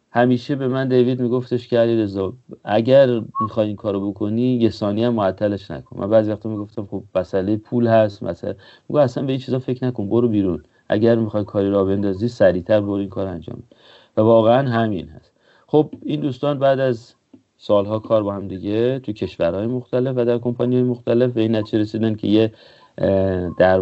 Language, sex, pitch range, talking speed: Persian, male, 95-115 Hz, 185 wpm